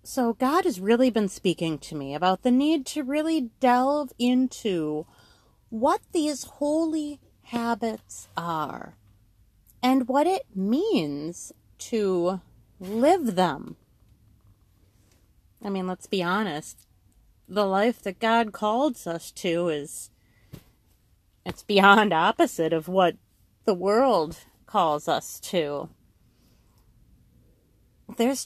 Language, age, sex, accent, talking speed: English, 30-49, female, American, 110 wpm